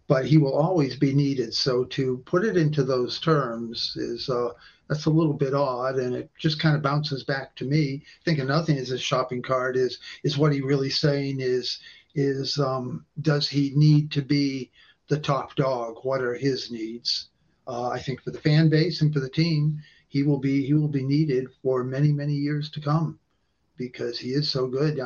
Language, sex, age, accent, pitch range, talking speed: English, male, 50-69, American, 130-155 Hz, 205 wpm